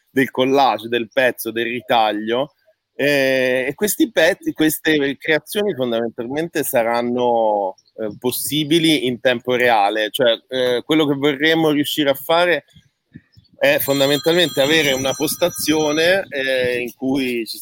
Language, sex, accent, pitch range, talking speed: Italian, male, native, 120-150 Hz, 125 wpm